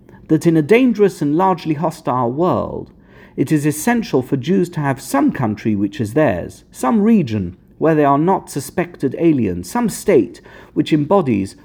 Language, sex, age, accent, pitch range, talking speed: English, male, 50-69, British, 125-170 Hz, 165 wpm